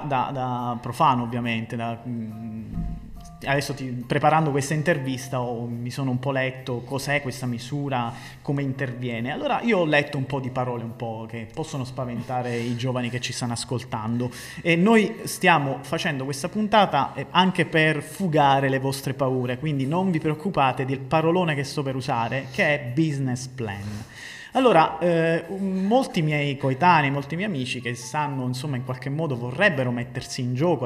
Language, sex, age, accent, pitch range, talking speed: Italian, male, 30-49, native, 125-160 Hz, 165 wpm